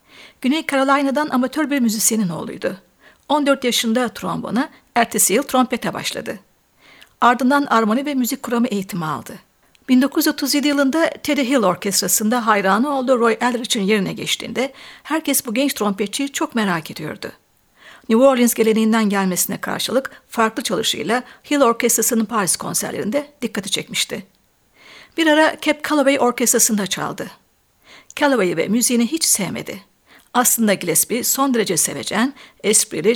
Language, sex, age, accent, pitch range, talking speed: Turkish, female, 60-79, native, 215-275 Hz, 125 wpm